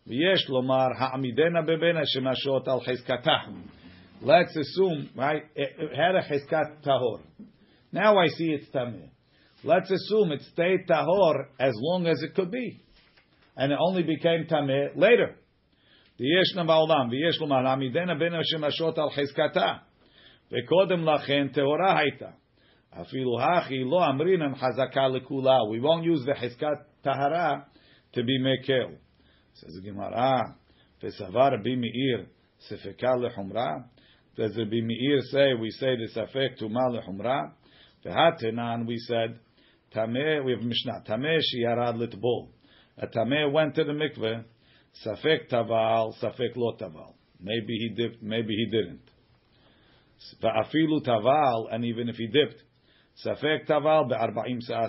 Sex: male